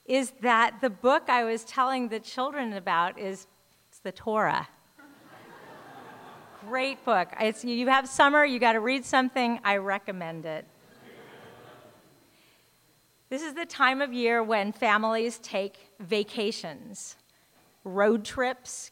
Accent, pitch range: American, 205-265 Hz